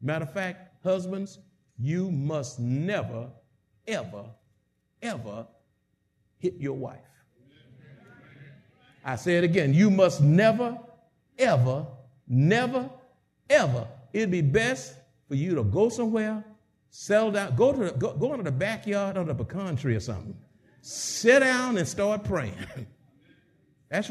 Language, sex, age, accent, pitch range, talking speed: English, male, 60-79, American, 135-210 Hz, 130 wpm